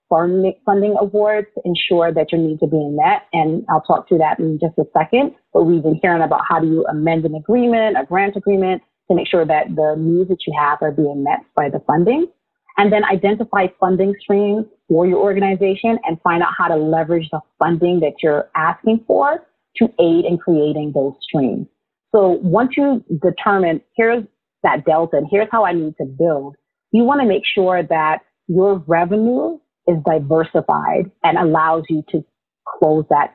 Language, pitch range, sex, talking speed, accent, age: English, 155-200 Hz, female, 185 wpm, American, 30-49